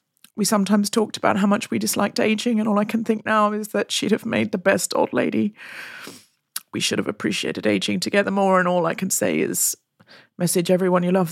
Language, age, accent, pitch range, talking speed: English, 40-59, British, 165-215 Hz, 215 wpm